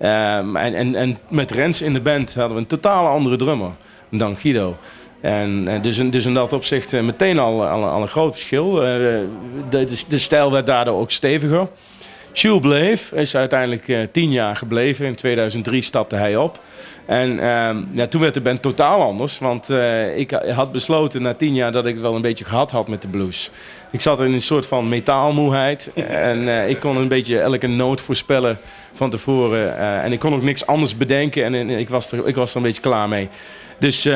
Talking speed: 210 wpm